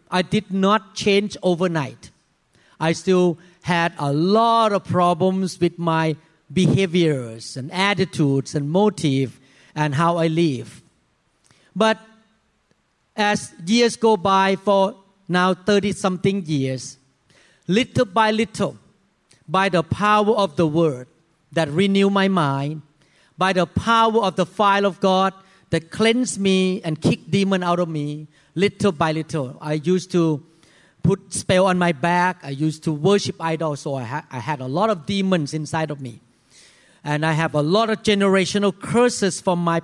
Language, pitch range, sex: English, 160-200 Hz, male